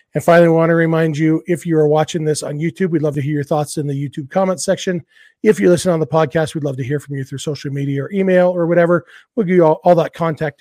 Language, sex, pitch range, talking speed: English, male, 150-175 Hz, 290 wpm